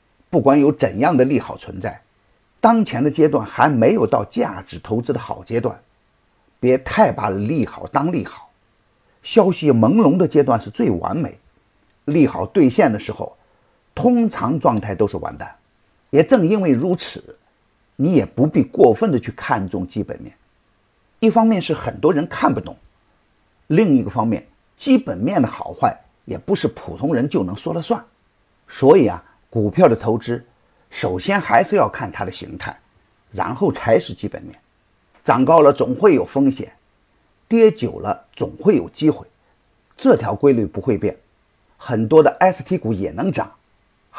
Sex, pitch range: male, 110-185 Hz